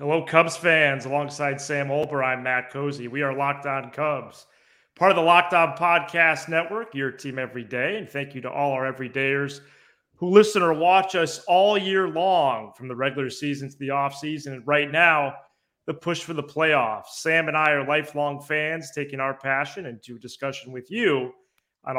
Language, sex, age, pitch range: English, male, 30-49, 135-165 Hz